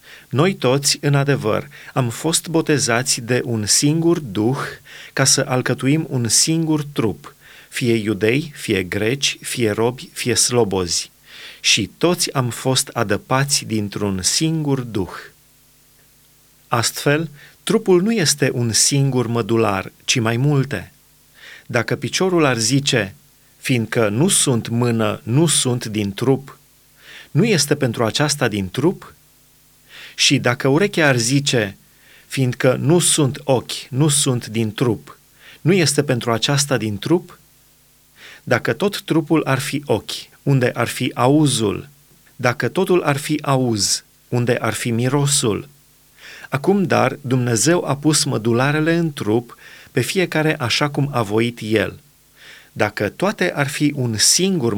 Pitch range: 115-150 Hz